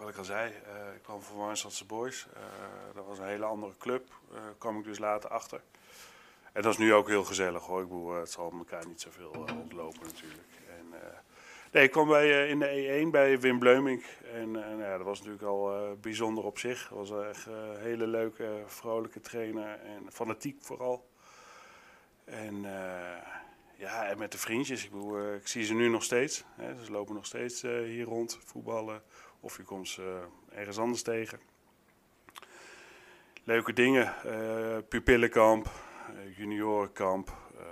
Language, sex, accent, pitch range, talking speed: Dutch, male, Dutch, 95-115 Hz, 185 wpm